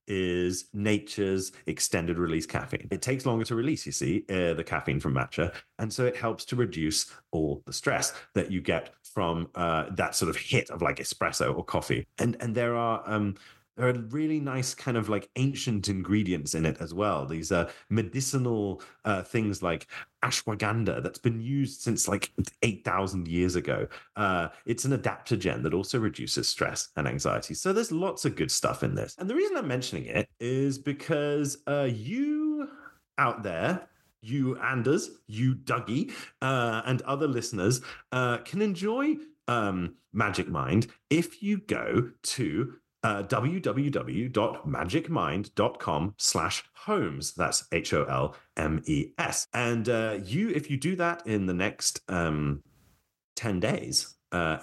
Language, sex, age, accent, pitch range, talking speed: English, male, 30-49, British, 90-135 Hz, 160 wpm